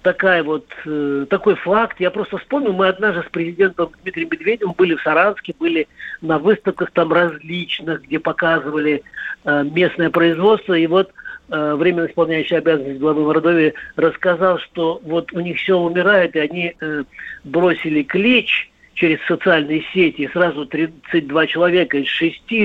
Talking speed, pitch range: 150 wpm, 145-175 Hz